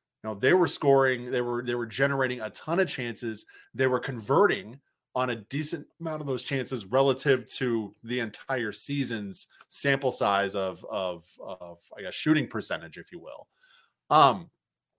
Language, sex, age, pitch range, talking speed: English, male, 20-39, 110-135 Hz, 165 wpm